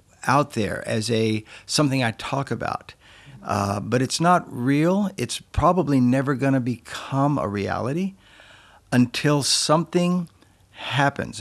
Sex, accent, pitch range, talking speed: male, American, 100-140 Hz, 125 wpm